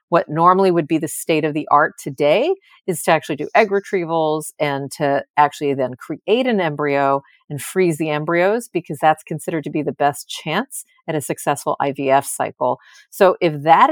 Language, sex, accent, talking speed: English, female, American, 185 wpm